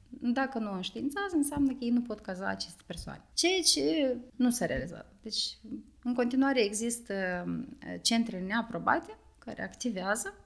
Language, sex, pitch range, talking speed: Romanian, female, 195-255 Hz, 140 wpm